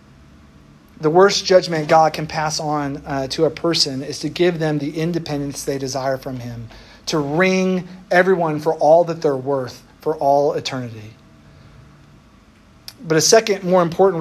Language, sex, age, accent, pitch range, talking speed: English, male, 40-59, American, 140-185 Hz, 155 wpm